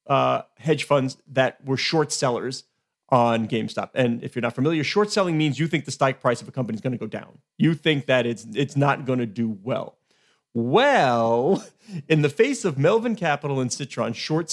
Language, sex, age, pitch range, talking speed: English, male, 40-59, 130-170 Hz, 205 wpm